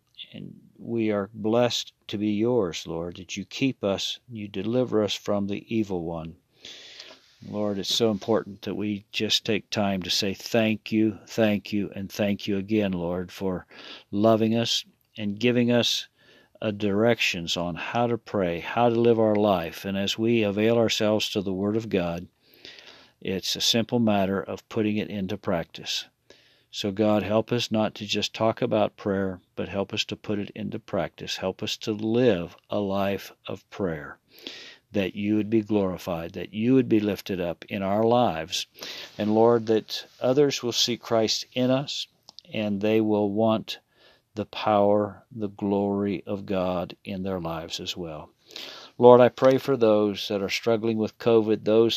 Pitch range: 100-115 Hz